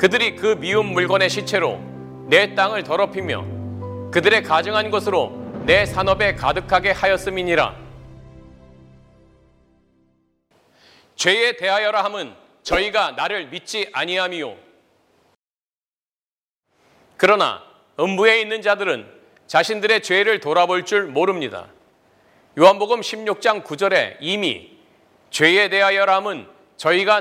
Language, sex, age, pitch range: Korean, male, 40-59, 160-210 Hz